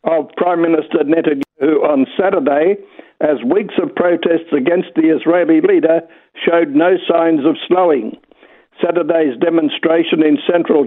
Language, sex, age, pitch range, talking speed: English, male, 60-79, 160-200 Hz, 125 wpm